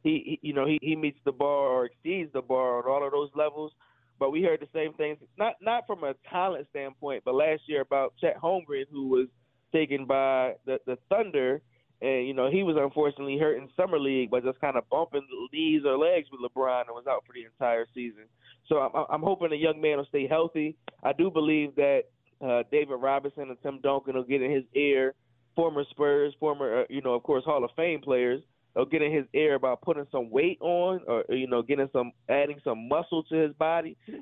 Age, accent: 20-39, American